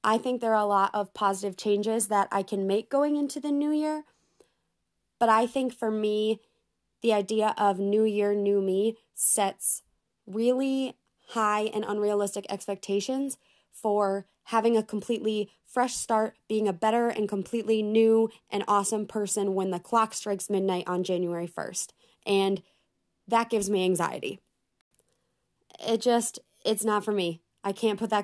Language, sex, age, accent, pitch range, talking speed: English, female, 20-39, American, 195-220 Hz, 155 wpm